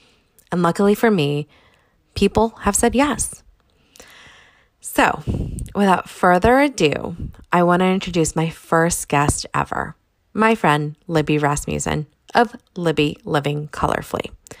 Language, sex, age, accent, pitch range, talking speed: English, female, 20-39, American, 155-215 Hz, 115 wpm